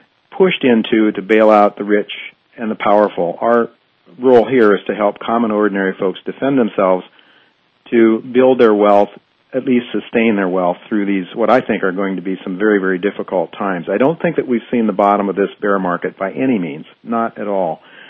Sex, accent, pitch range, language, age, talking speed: male, American, 95-115 Hz, English, 50-69, 205 wpm